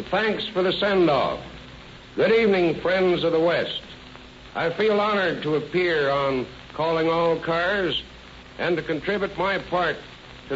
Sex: male